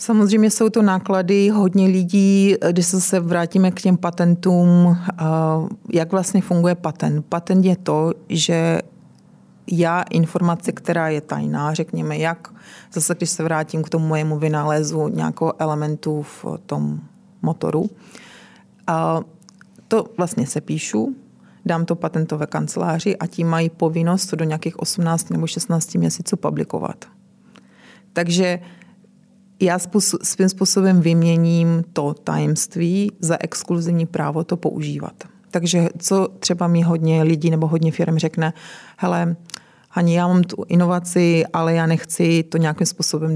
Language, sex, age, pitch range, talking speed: Czech, female, 30-49, 160-185 Hz, 130 wpm